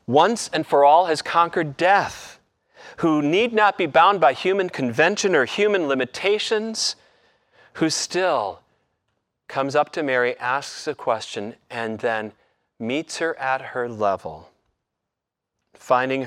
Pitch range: 115-170 Hz